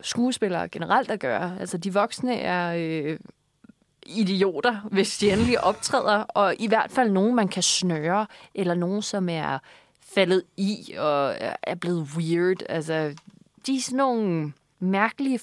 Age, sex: 20-39, female